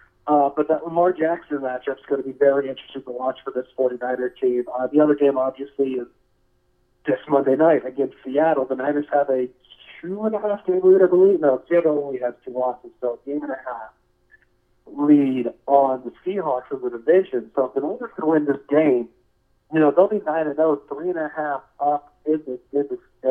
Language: English